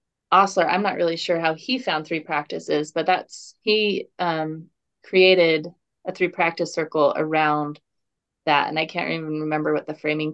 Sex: female